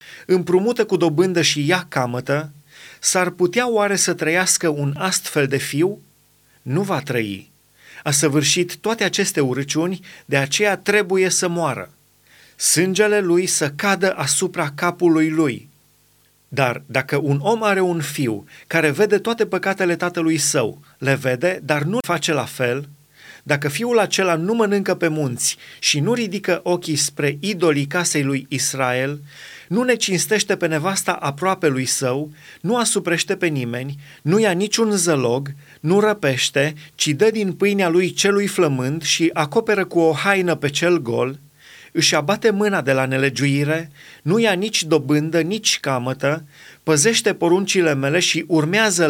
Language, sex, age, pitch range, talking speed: Romanian, male, 30-49, 145-190 Hz, 150 wpm